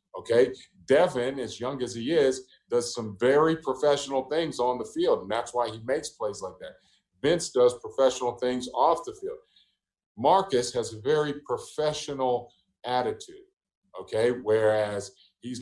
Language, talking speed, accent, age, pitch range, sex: English, 150 wpm, American, 50-69, 120-180 Hz, male